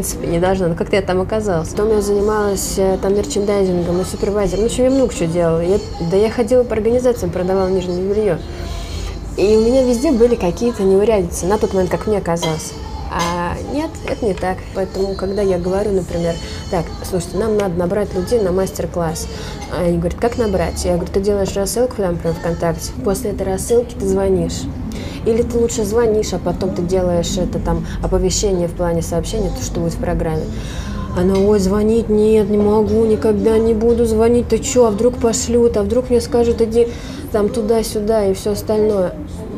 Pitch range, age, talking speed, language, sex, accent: 180-220 Hz, 20-39, 185 wpm, Russian, female, native